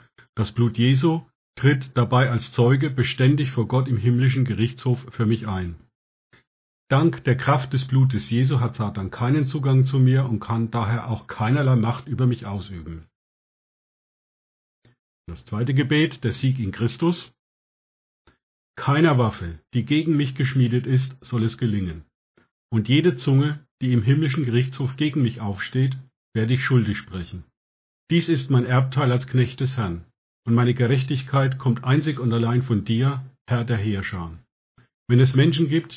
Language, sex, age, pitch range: German, male, 50-69, 115-135 Hz